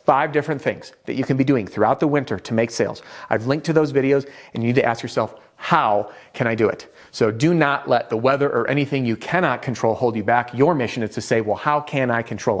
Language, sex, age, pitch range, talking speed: English, male, 30-49, 110-140 Hz, 255 wpm